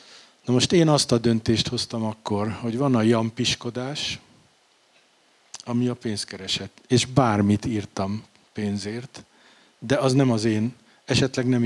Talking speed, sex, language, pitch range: 140 wpm, male, Hungarian, 110-135 Hz